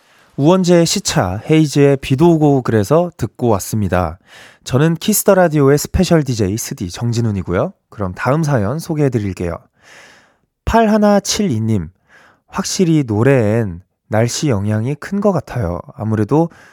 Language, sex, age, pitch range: Korean, male, 20-39, 105-155 Hz